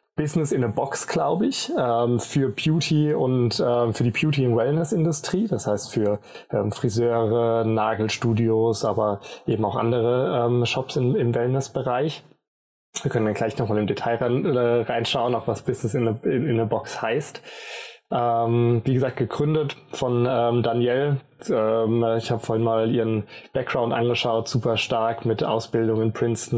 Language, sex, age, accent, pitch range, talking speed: German, male, 20-39, German, 110-130 Hz, 160 wpm